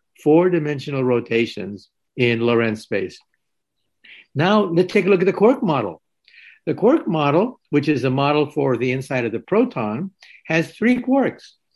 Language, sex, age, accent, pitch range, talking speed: English, male, 60-79, American, 125-195 Hz, 155 wpm